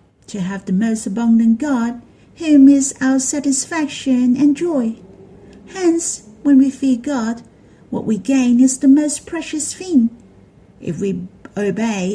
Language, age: Chinese, 50-69